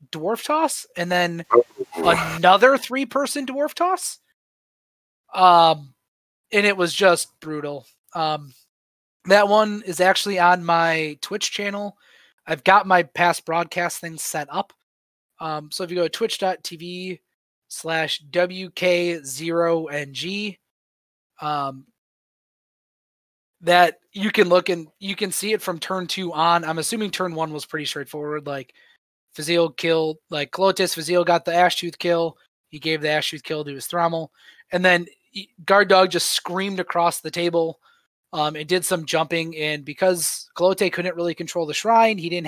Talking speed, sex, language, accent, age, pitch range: 155 wpm, male, English, American, 20-39, 155-190 Hz